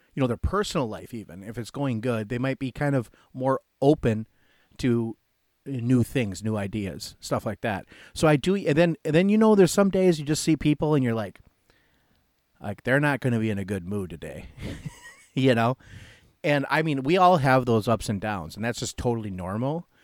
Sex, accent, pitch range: male, American, 105-135 Hz